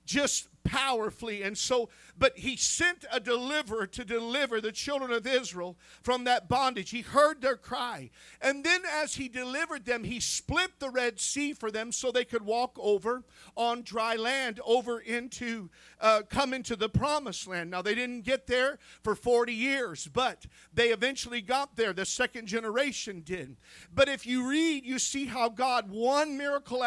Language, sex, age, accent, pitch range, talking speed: English, male, 50-69, American, 225-265 Hz, 175 wpm